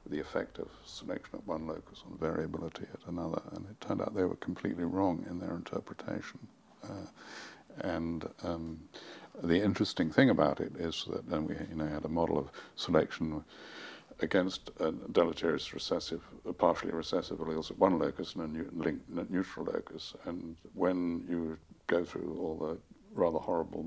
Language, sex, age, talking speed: English, male, 60-79, 155 wpm